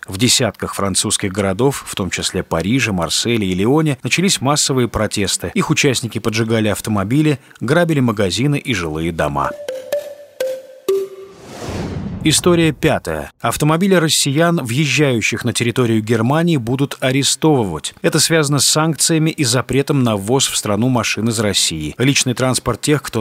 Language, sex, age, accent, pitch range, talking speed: Russian, male, 30-49, native, 105-150 Hz, 130 wpm